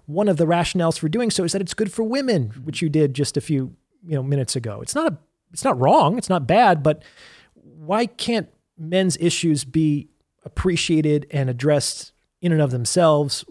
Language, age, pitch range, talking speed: English, 30-49, 135-170 Hz, 200 wpm